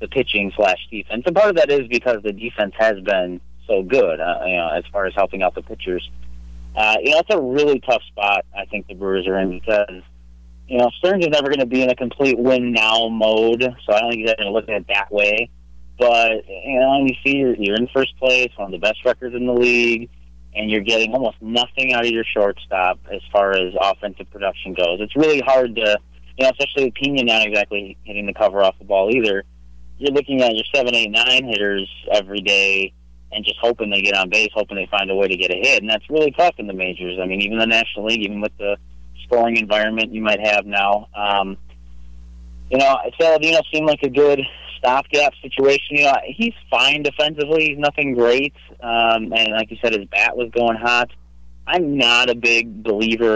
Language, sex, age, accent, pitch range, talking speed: English, male, 30-49, American, 100-125 Hz, 220 wpm